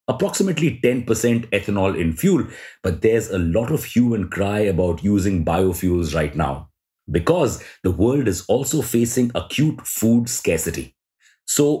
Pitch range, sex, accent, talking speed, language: 95-125 Hz, male, Indian, 140 wpm, English